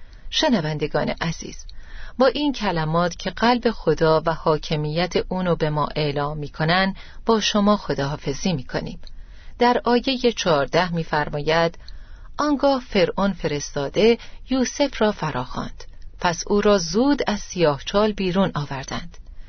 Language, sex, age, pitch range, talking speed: Persian, female, 40-59, 160-215 Hz, 115 wpm